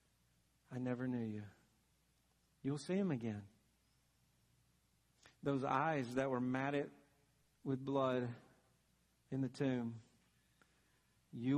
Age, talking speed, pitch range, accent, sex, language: 50-69, 100 wpm, 125-175 Hz, American, male, English